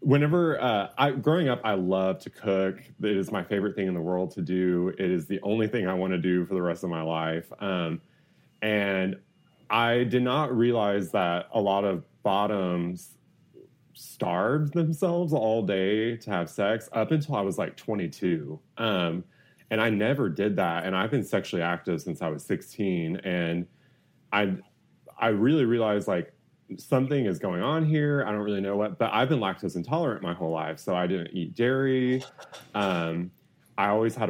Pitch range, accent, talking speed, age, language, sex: 90-120 Hz, American, 185 wpm, 30-49, English, male